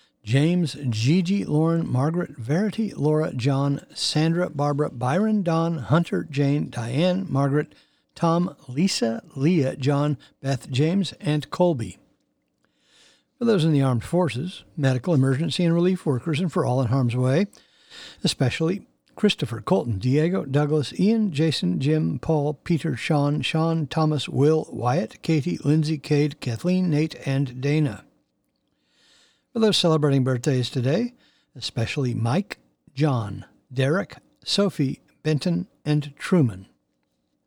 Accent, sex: American, male